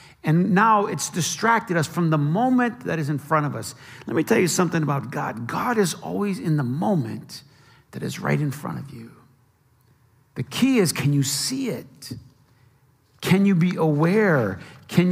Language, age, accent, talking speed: English, 50-69, American, 185 wpm